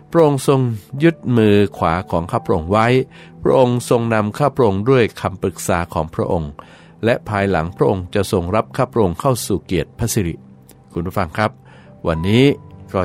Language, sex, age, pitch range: Thai, male, 60-79, 85-115 Hz